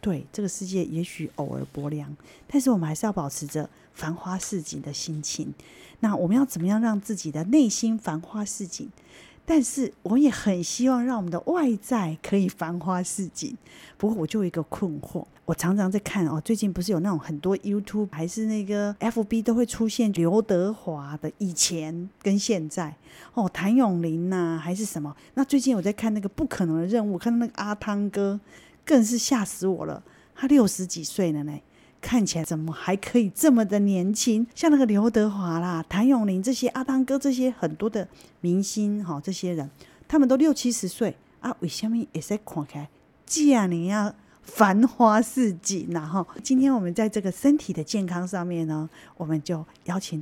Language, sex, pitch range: Chinese, female, 170-225 Hz